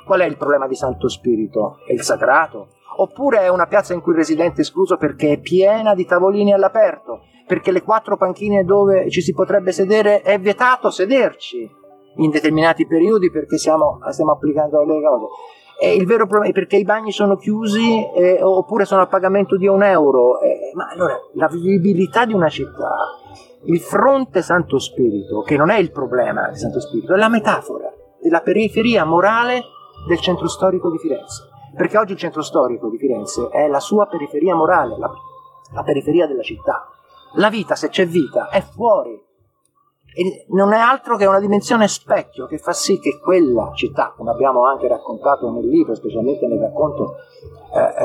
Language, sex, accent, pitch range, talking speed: Italian, male, native, 170-220 Hz, 180 wpm